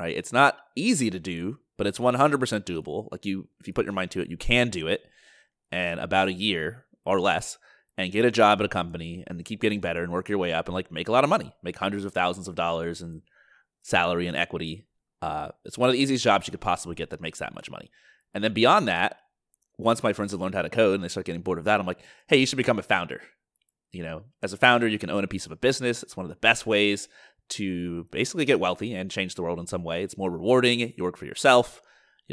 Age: 30-49